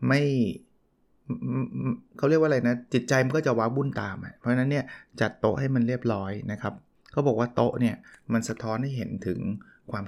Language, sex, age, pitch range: Thai, male, 20-39, 110-135 Hz